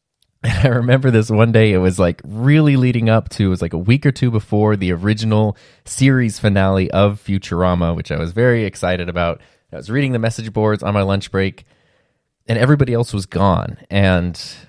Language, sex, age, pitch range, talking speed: English, male, 20-39, 95-120 Hz, 195 wpm